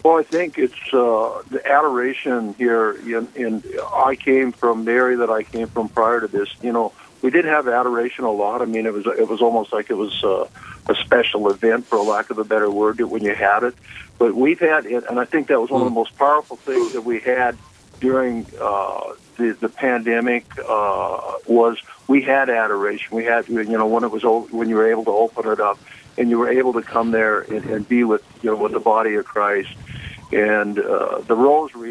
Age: 50-69